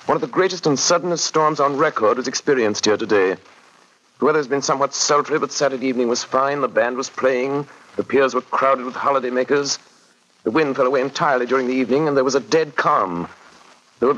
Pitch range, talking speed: 130-160 Hz, 210 wpm